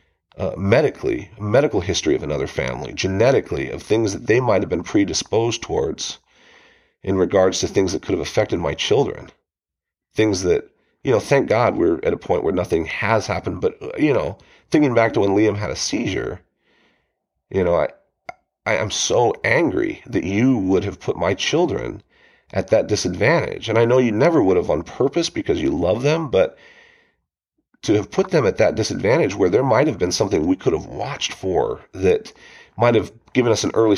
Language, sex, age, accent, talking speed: English, male, 40-59, American, 185 wpm